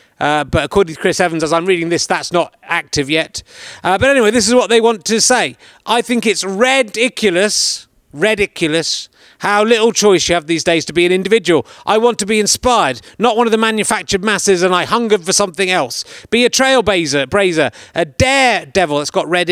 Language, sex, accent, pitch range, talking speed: English, male, British, 165-220 Hz, 205 wpm